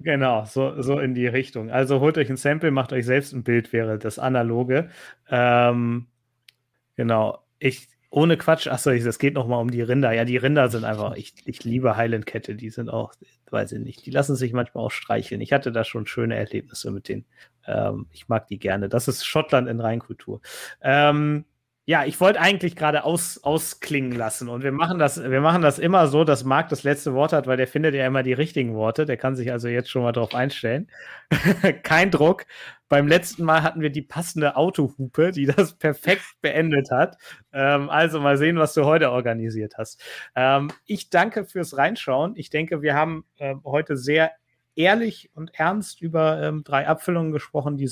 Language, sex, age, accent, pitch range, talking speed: German, male, 30-49, German, 125-155 Hz, 195 wpm